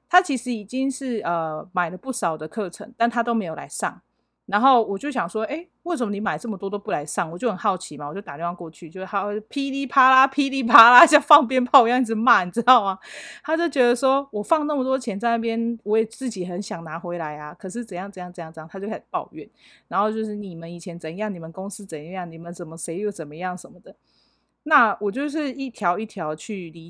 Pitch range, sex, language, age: 180-235 Hz, female, Chinese, 30-49